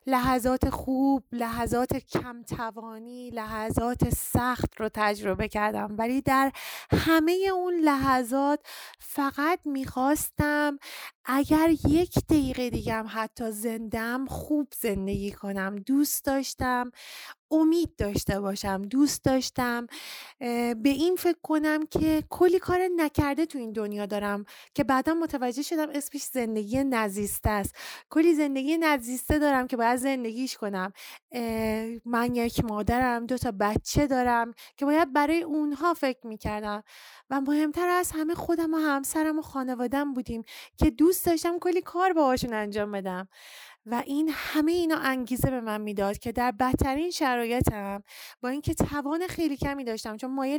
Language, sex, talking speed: Persian, female, 130 wpm